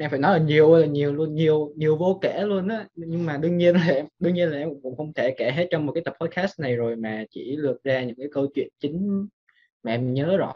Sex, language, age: male, Vietnamese, 20-39